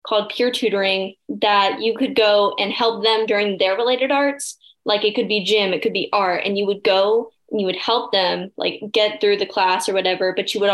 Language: English